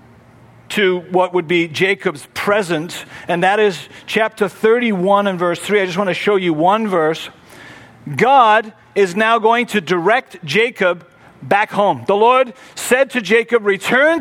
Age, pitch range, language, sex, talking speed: 40-59, 170-230 Hz, English, male, 155 wpm